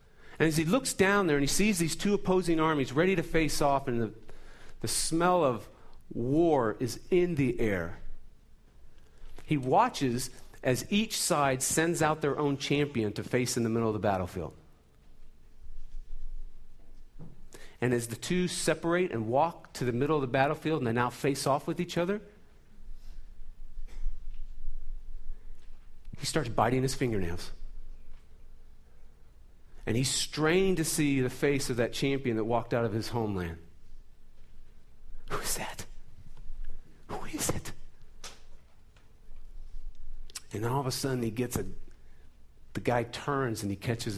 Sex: male